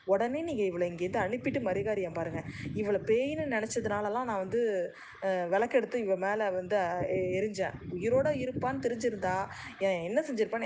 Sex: female